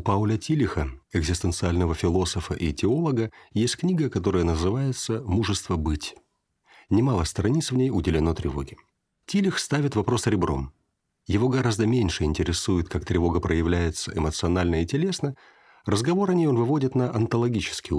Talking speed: 135 wpm